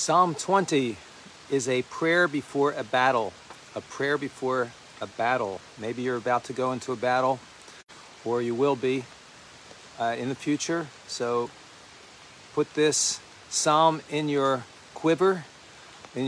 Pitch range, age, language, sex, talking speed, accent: 120-150 Hz, 50-69, English, male, 135 wpm, American